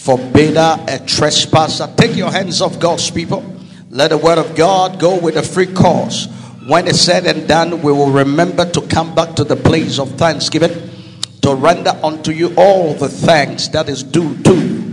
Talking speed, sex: 185 wpm, male